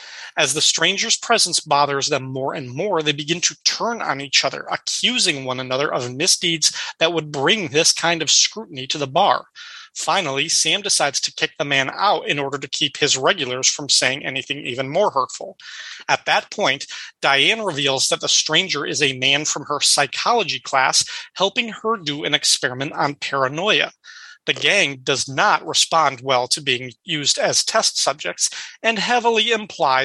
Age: 30-49